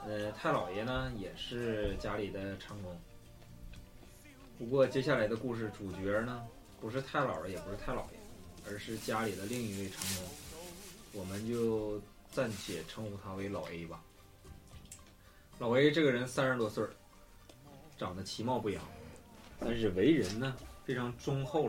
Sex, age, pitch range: male, 20-39, 95-125 Hz